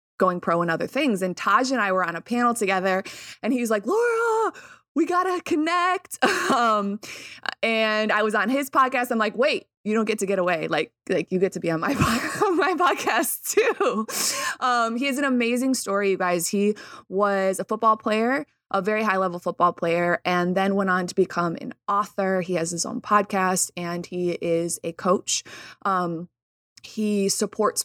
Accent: American